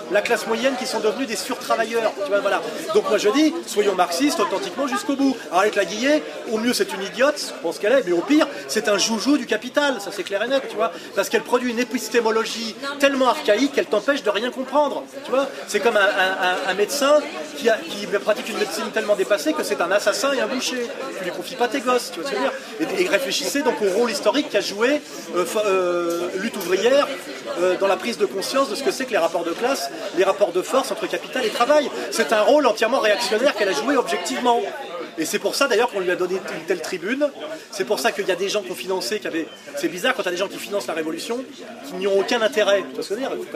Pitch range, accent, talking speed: 190-270 Hz, French, 255 wpm